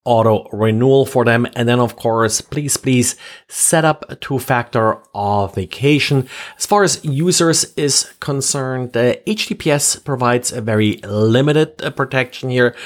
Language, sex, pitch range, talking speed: English, male, 115-145 Hz, 135 wpm